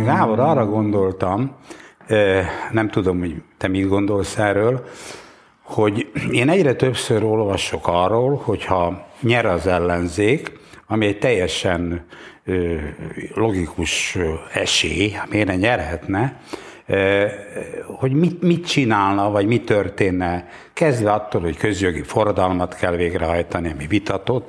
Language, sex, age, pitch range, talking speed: Hungarian, male, 60-79, 95-130 Hz, 110 wpm